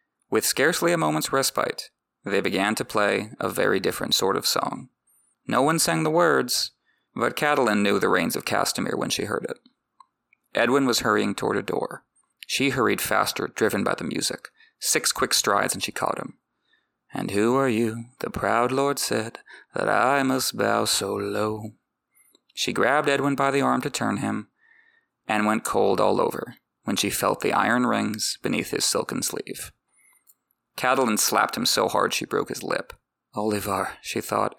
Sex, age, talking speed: male, 30-49, 175 wpm